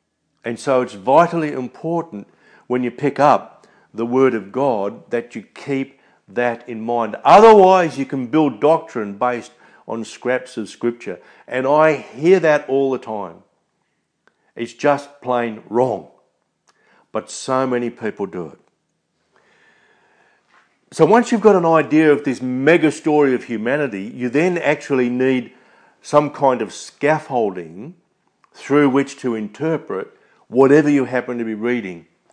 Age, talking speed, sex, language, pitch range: 50-69, 140 wpm, male, English, 115-145 Hz